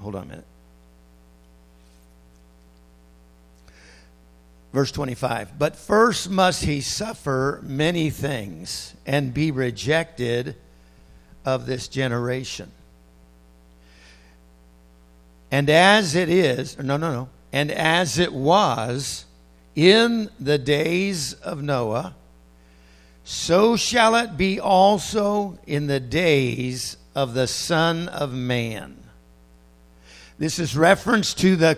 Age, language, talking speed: 60-79, English, 100 wpm